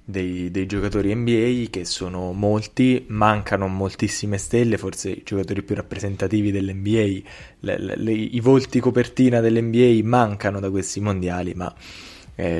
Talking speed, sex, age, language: 125 wpm, male, 20-39, Italian